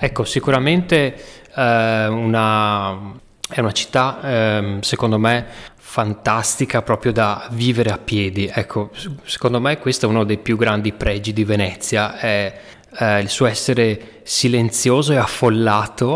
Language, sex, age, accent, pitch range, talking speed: Italian, male, 20-39, native, 105-125 Hz, 125 wpm